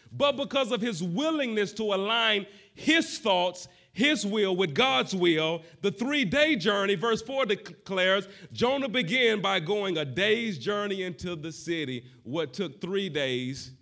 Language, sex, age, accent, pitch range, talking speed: English, male, 40-59, American, 115-180 Hz, 150 wpm